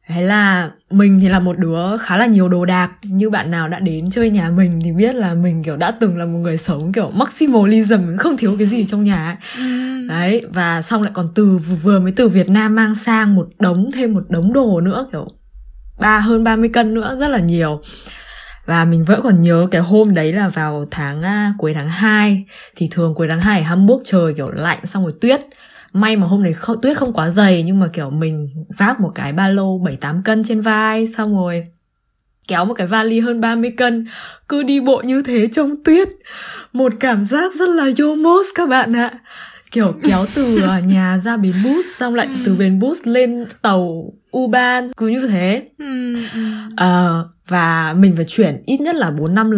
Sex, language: female, Vietnamese